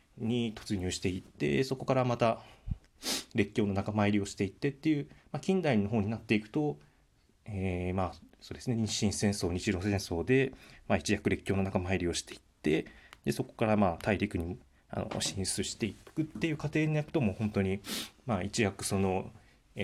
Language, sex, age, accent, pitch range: Japanese, male, 20-39, native, 95-120 Hz